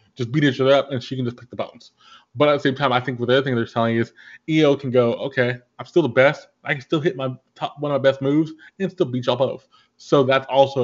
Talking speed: 300 wpm